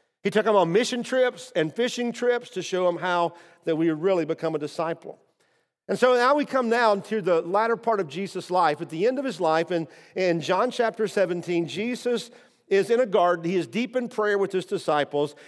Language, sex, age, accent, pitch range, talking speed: English, male, 50-69, American, 180-225 Hz, 220 wpm